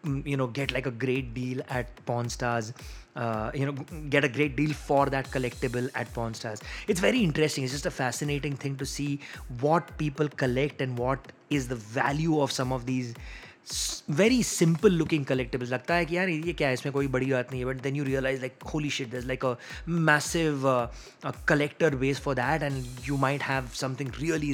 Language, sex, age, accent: English, male, 20-39, Indian